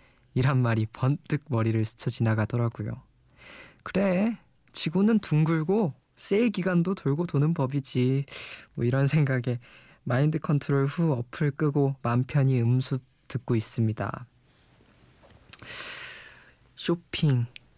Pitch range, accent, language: 115-145 Hz, native, Korean